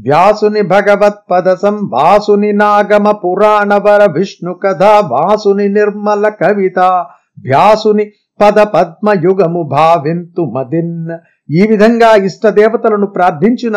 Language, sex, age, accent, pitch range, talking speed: Telugu, male, 50-69, native, 185-215 Hz, 90 wpm